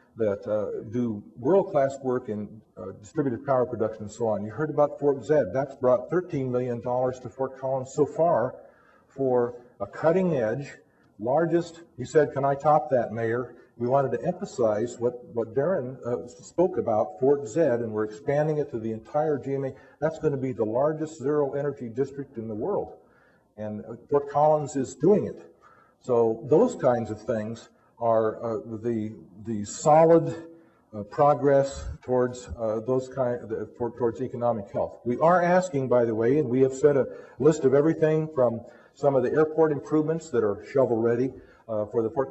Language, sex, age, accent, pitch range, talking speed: English, male, 50-69, American, 115-145 Hz, 180 wpm